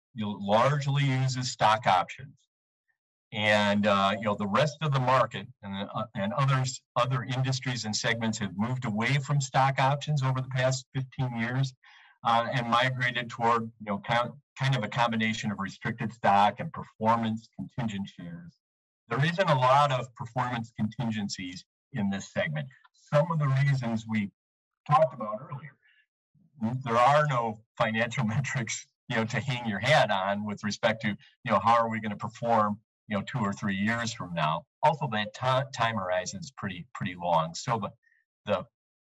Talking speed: 165 wpm